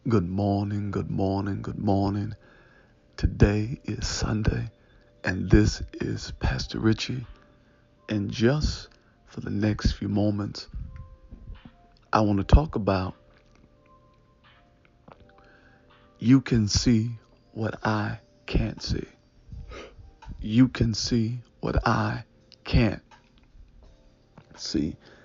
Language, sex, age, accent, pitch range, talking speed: English, male, 50-69, American, 105-120 Hz, 95 wpm